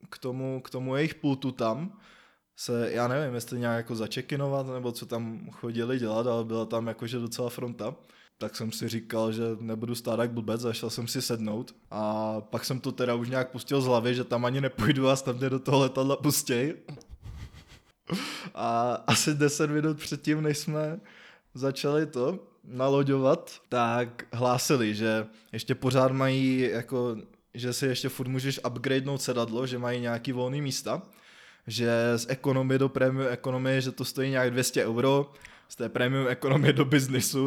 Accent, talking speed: native, 170 wpm